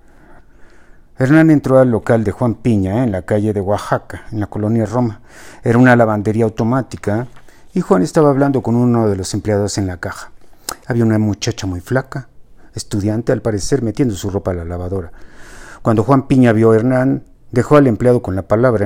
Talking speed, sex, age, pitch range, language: 185 wpm, male, 50-69, 100-120 Hz, Spanish